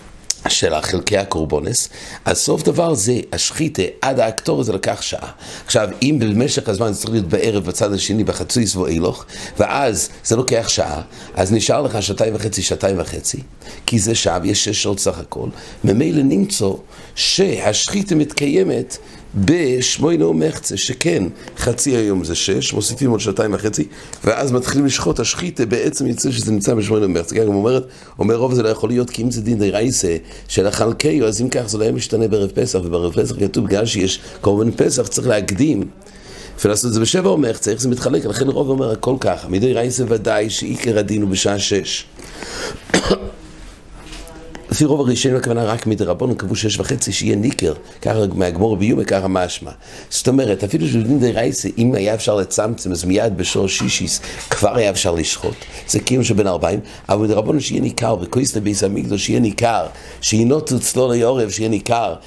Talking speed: 150 wpm